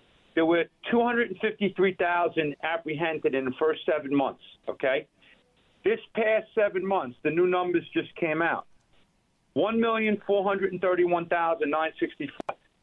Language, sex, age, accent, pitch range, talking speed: English, male, 50-69, American, 170-235 Hz, 100 wpm